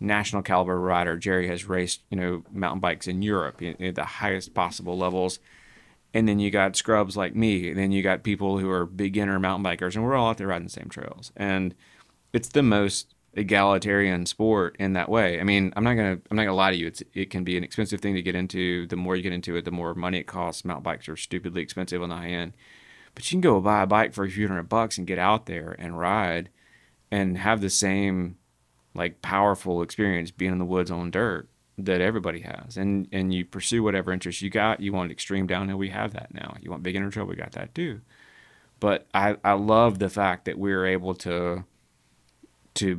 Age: 30-49